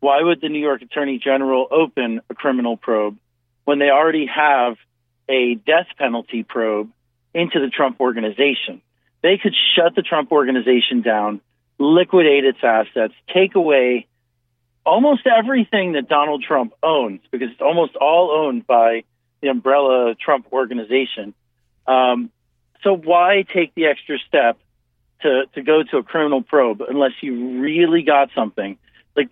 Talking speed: 145 wpm